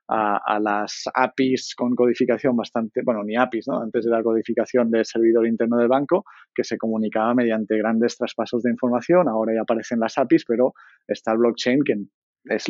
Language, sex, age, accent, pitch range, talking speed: Spanish, male, 20-39, Spanish, 110-130 Hz, 185 wpm